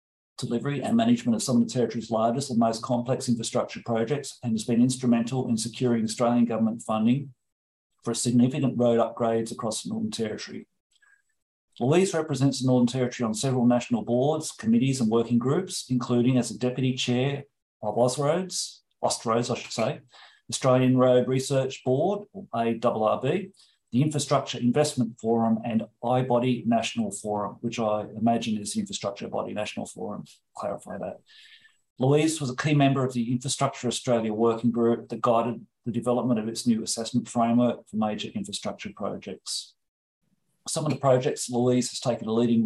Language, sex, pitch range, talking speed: English, male, 115-135 Hz, 160 wpm